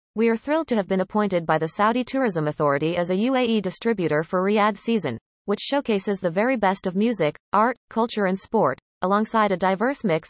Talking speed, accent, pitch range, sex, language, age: 200 wpm, American, 165-225 Hz, female, English, 30-49